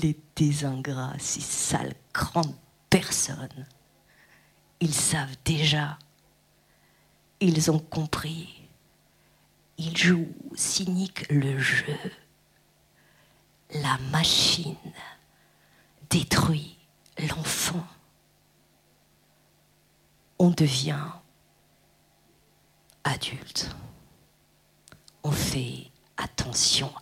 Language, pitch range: French, 140-160 Hz